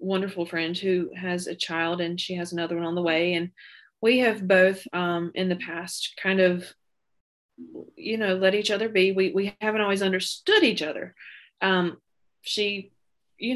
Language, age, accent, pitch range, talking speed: English, 20-39, American, 175-200 Hz, 175 wpm